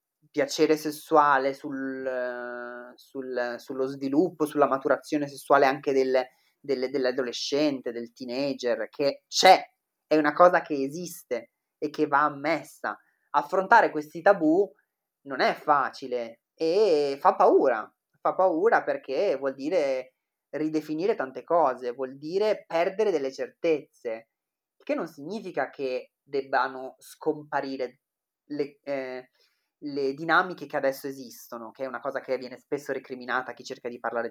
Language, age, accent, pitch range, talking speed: Italian, 30-49, native, 135-165 Hz, 125 wpm